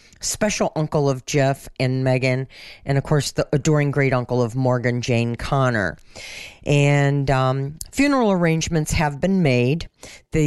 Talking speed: 145 wpm